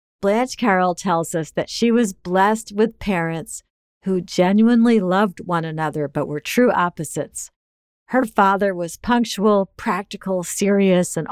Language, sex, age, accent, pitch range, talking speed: English, female, 50-69, American, 170-210 Hz, 140 wpm